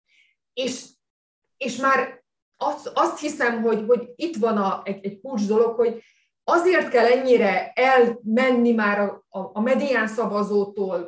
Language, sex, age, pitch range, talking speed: Hungarian, female, 30-49, 180-245 Hz, 135 wpm